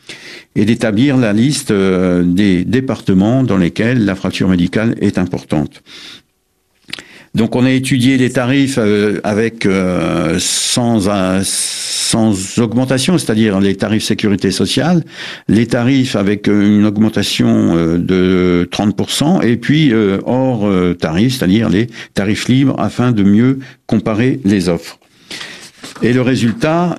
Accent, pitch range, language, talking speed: French, 95-125 Hz, French, 120 wpm